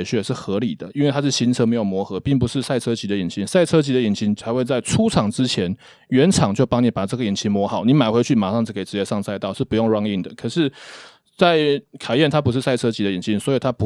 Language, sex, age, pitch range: Chinese, male, 20-39, 110-140 Hz